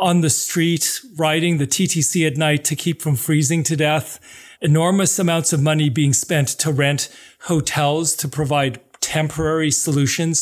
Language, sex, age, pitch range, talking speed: English, male, 40-59, 145-175 Hz, 155 wpm